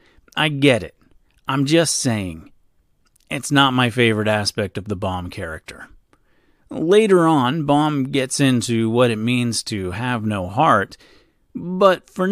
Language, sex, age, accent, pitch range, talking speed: English, male, 40-59, American, 115-170 Hz, 140 wpm